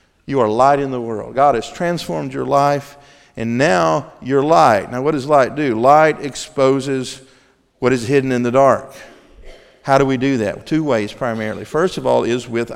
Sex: male